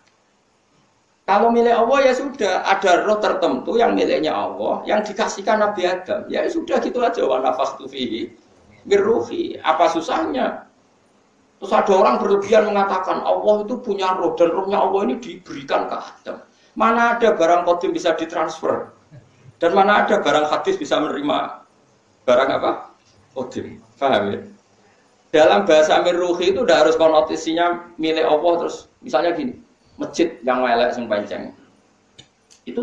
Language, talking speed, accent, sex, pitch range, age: Indonesian, 135 wpm, native, male, 155-230 Hz, 50-69